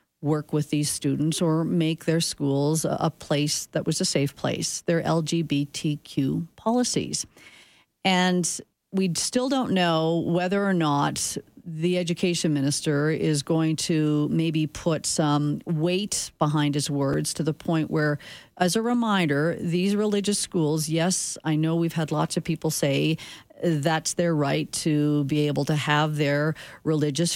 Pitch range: 150-180 Hz